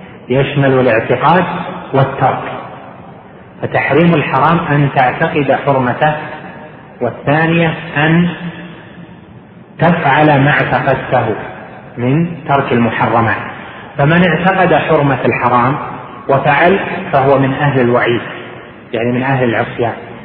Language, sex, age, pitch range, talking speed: Arabic, male, 40-59, 115-140 Hz, 85 wpm